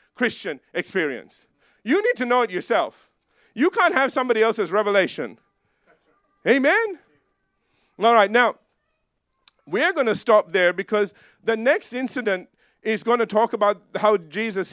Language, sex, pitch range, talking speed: English, male, 175-240 Hz, 140 wpm